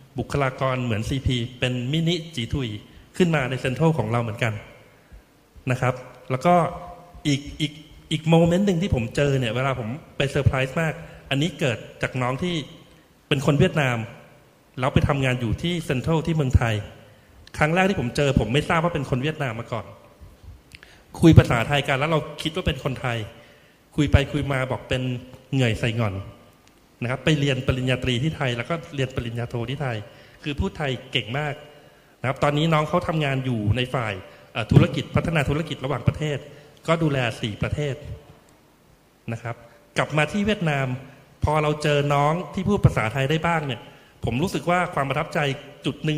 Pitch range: 125-155 Hz